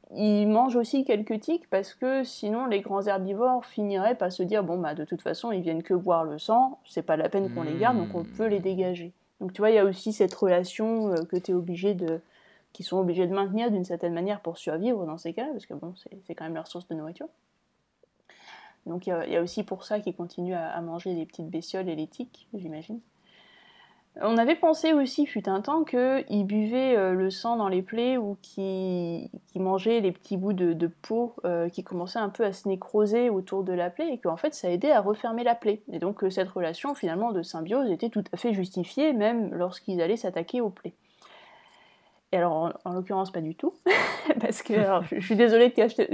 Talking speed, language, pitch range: 230 wpm, French, 180-235 Hz